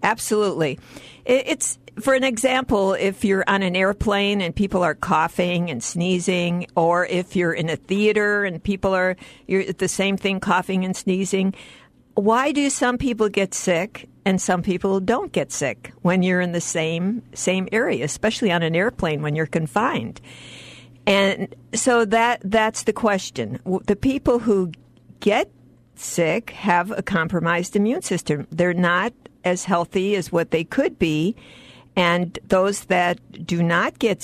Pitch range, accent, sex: 175-215 Hz, American, female